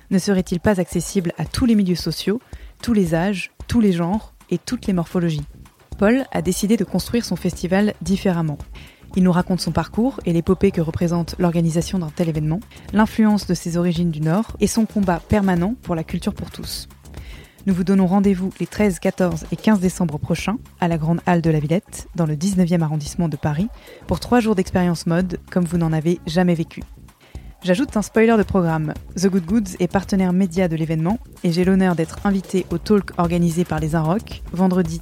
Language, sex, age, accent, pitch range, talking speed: French, female, 20-39, French, 170-200 Hz, 195 wpm